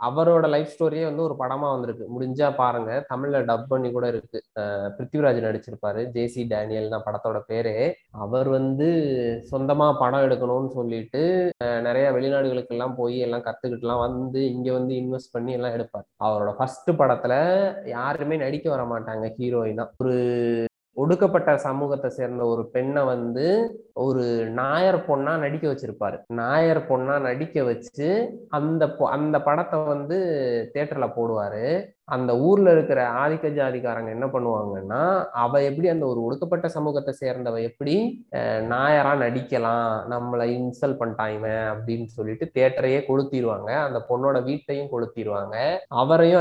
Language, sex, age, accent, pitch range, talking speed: Tamil, male, 20-39, native, 115-145 Hz, 125 wpm